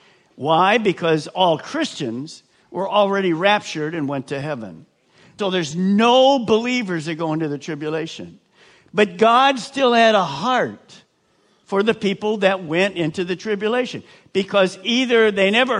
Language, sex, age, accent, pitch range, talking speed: English, male, 50-69, American, 155-210 Hz, 145 wpm